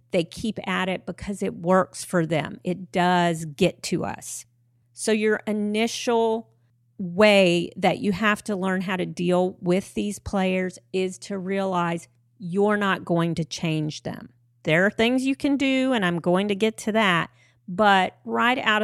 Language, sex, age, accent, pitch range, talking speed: English, female, 40-59, American, 150-195 Hz, 170 wpm